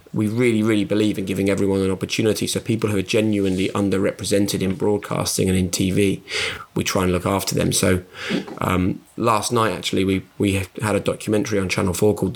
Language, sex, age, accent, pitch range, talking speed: English, male, 20-39, British, 95-105 Hz, 195 wpm